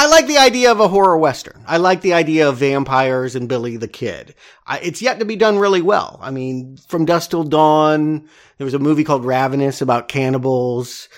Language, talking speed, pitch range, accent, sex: English, 215 wpm, 130-160 Hz, American, male